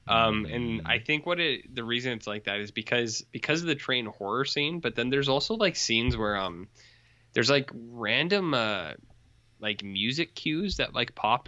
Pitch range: 105-125 Hz